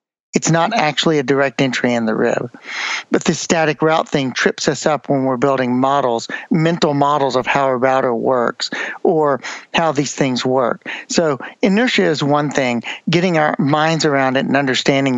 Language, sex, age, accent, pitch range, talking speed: English, male, 50-69, American, 135-170 Hz, 180 wpm